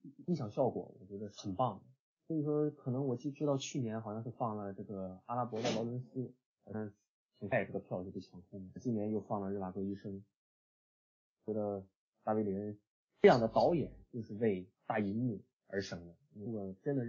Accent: native